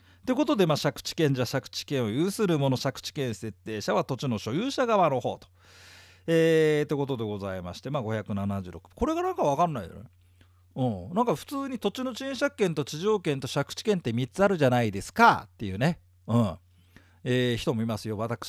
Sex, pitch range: male, 110-175 Hz